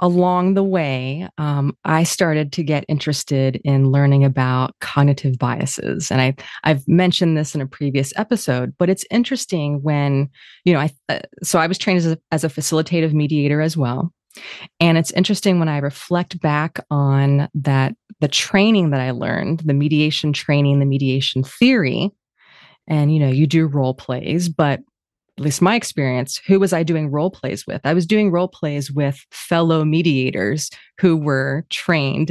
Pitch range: 140-175 Hz